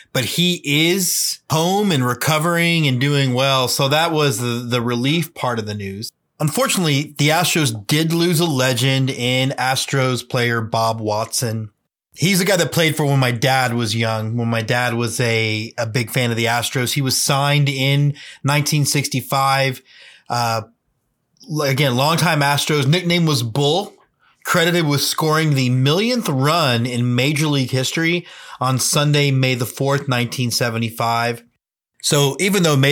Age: 30-49